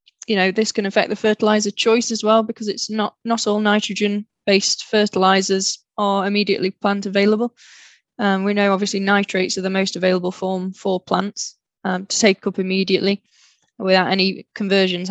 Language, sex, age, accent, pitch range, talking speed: English, female, 10-29, British, 185-200 Hz, 165 wpm